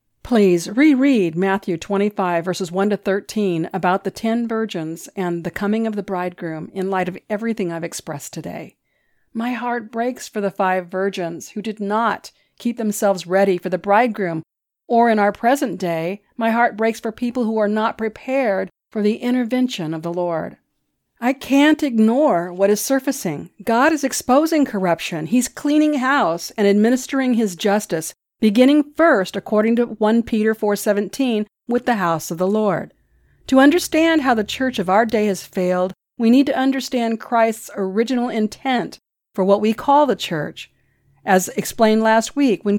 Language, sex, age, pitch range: English, female, 50-69, 190-245 Hz